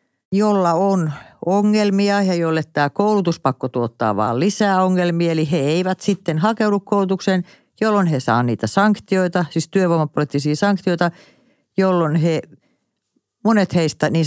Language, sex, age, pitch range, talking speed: Finnish, female, 50-69, 130-190 Hz, 125 wpm